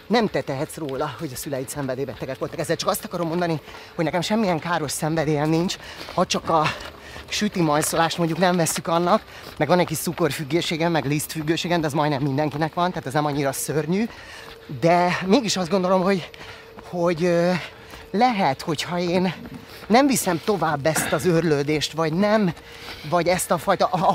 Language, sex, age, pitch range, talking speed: Hungarian, male, 30-49, 150-180 Hz, 170 wpm